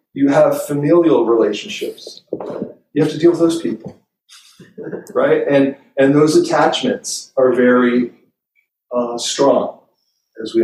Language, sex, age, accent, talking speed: English, male, 40-59, American, 125 wpm